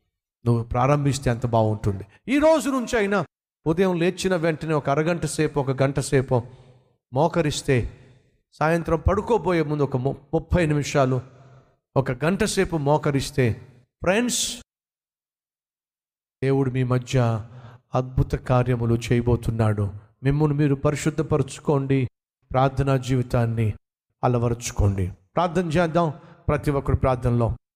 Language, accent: Telugu, native